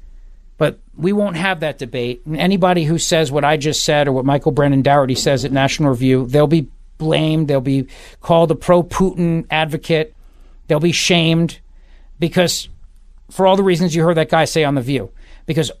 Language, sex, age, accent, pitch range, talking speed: English, male, 50-69, American, 145-200 Hz, 185 wpm